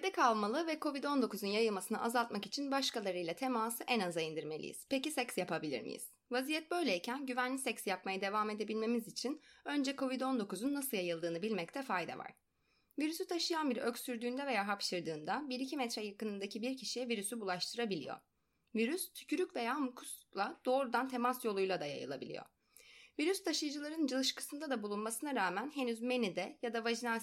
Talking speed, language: 140 wpm, Turkish